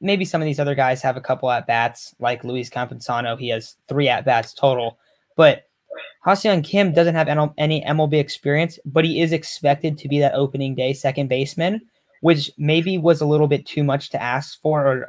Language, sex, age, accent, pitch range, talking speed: English, male, 10-29, American, 135-160 Hz, 200 wpm